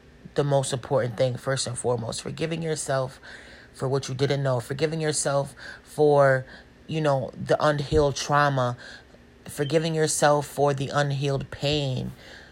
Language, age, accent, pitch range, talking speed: English, 30-49, American, 130-155 Hz, 135 wpm